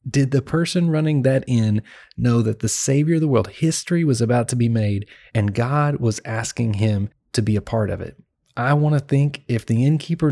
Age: 30-49